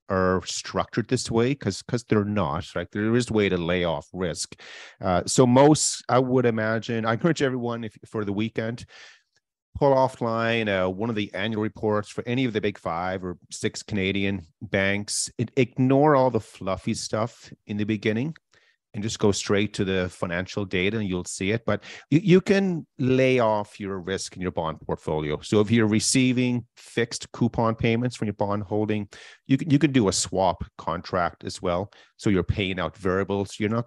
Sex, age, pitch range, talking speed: male, 40-59, 95-115 Hz, 195 wpm